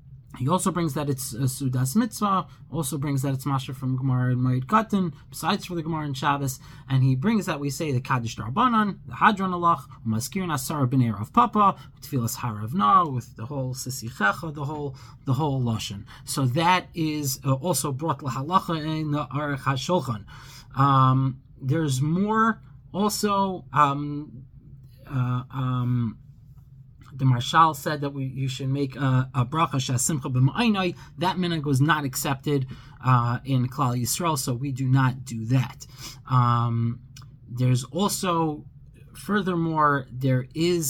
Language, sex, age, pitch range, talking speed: English, male, 20-39, 130-160 Hz, 150 wpm